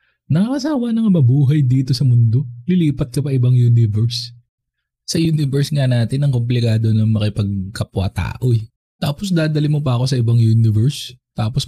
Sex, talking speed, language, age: male, 150 wpm, Filipino, 20-39